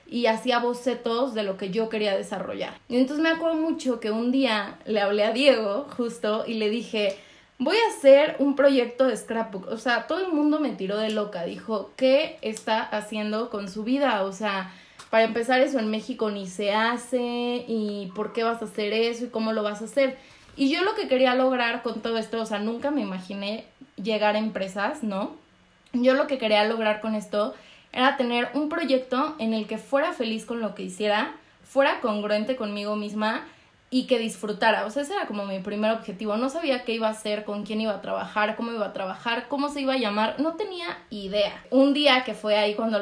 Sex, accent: female, Mexican